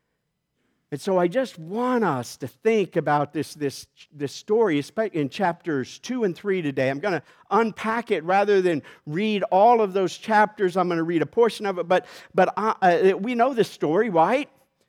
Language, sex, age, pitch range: English, male, 50-69, 155-215 Hz